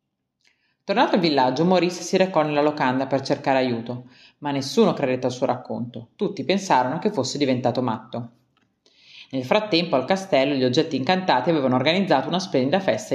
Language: Italian